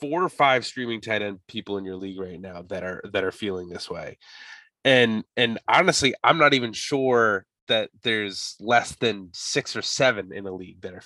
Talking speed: 205 wpm